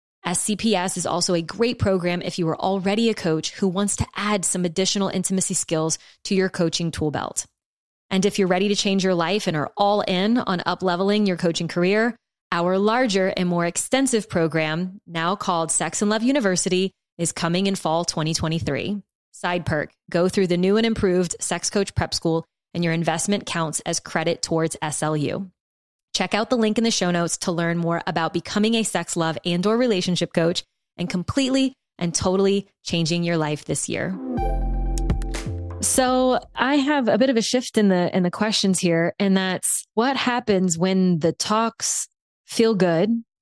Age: 20-39